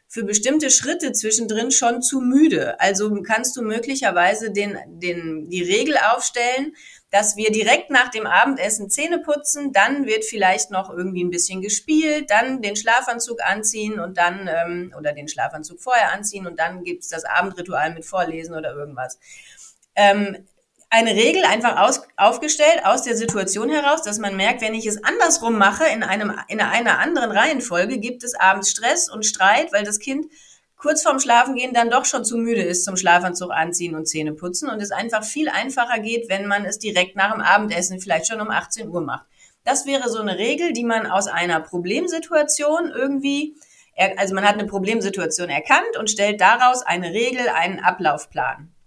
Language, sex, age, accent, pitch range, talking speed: German, female, 30-49, German, 185-250 Hz, 175 wpm